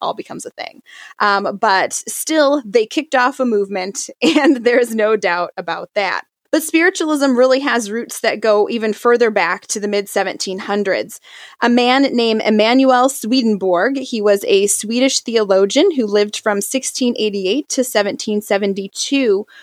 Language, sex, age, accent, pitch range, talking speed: English, female, 20-39, American, 210-275 Hz, 145 wpm